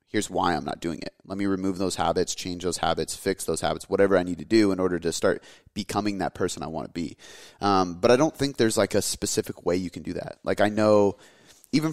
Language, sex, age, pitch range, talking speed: English, male, 30-49, 85-100 Hz, 250 wpm